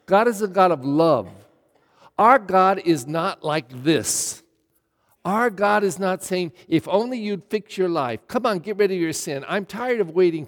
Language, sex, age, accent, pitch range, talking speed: English, male, 50-69, American, 150-245 Hz, 195 wpm